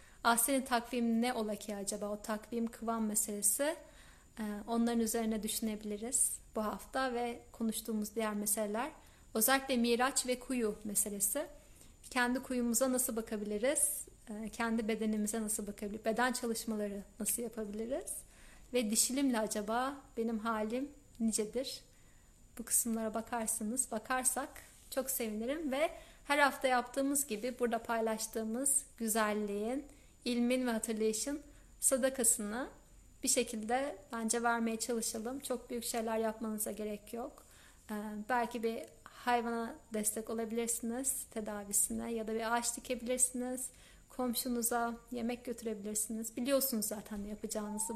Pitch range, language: 220-255 Hz, Turkish